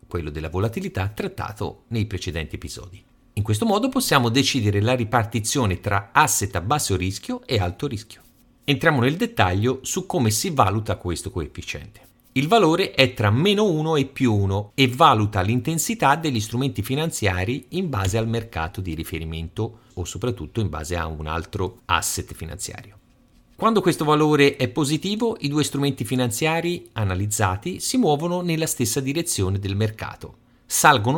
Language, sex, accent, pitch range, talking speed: Italian, male, native, 100-145 Hz, 150 wpm